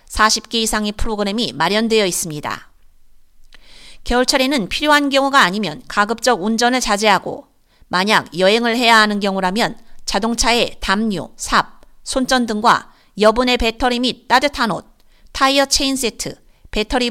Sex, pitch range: female, 210-250 Hz